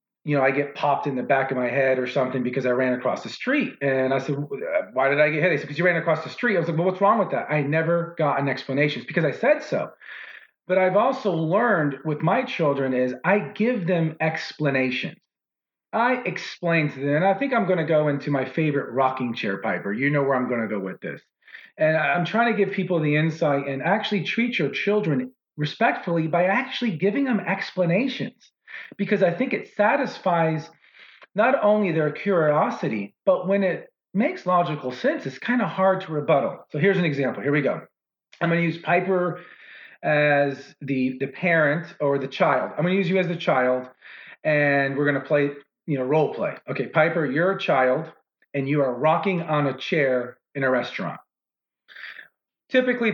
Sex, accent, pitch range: male, American, 140-190 Hz